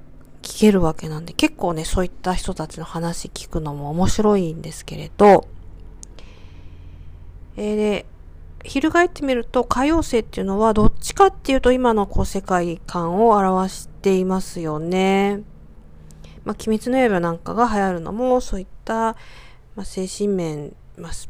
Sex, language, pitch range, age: female, Japanese, 165-225 Hz, 40-59